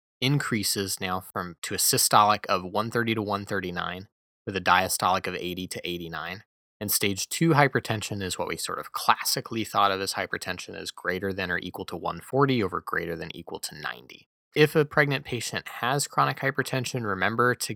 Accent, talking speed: American, 185 wpm